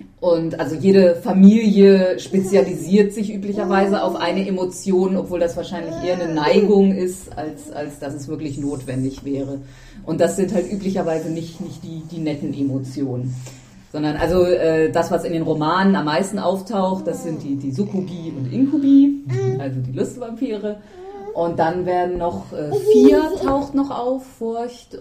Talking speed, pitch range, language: 160 wpm, 140-185 Hz, German